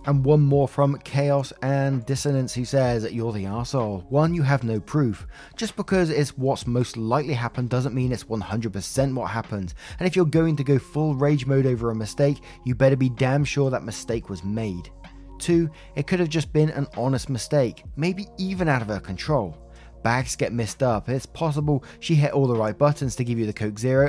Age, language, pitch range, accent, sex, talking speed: 20-39, English, 120-150 Hz, British, male, 210 wpm